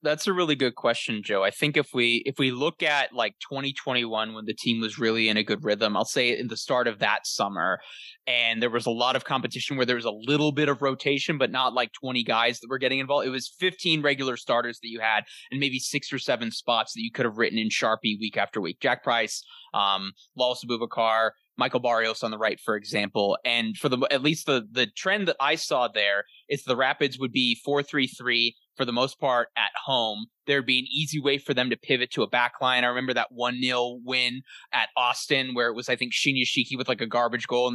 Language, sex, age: English, male, 20-39